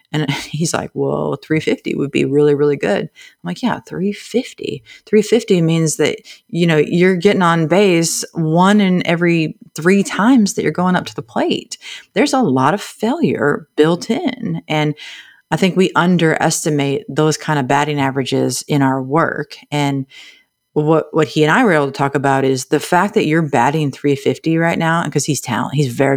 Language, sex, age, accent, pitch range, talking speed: English, female, 30-49, American, 140-170 Hz, 180 wpm